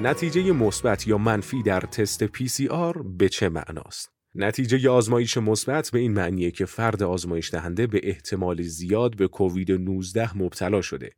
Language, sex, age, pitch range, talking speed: Persian, male, 30-49, 95-120 Hz, 160 wpm